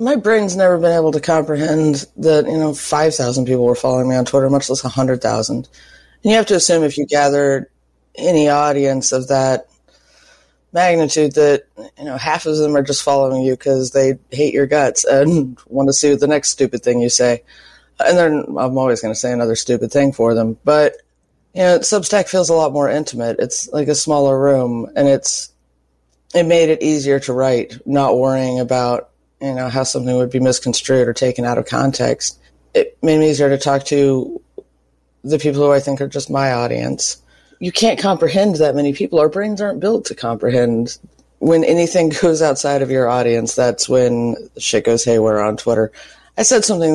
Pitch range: 125-150 Hz